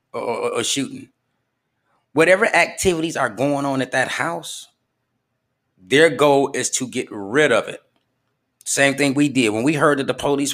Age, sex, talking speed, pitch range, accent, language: 30-49, male, 165 wpm, 125-150 Hz, American, English